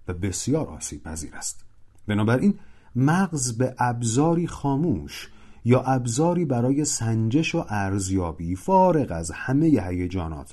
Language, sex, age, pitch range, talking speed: Persian, male, 40-59, 95-145 Hz, 120 wpm